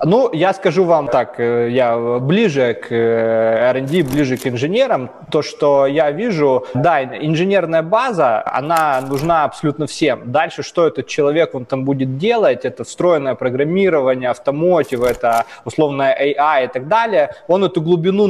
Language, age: Russian, 20-39